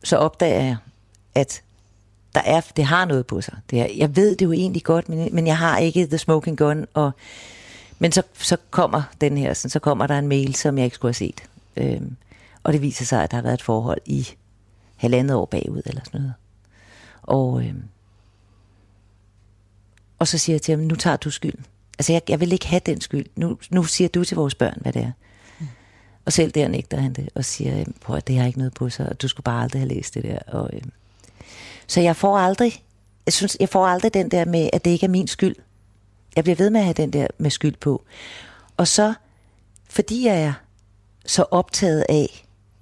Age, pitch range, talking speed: 40-59, 100-170 Hz, 215 wpm